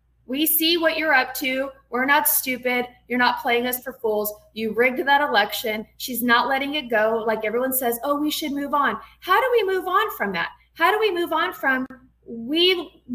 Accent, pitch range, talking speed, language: American, 235-305 Hz, 210 wpm, English